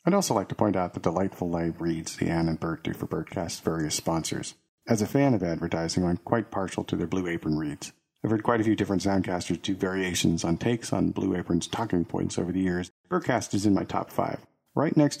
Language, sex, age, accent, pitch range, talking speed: English, male, 40-59, American, 95-145 Hz, 235 wpm